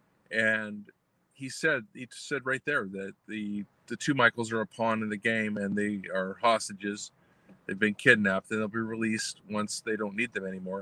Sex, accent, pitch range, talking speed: male, American, 105-135 Hz, 195 wpm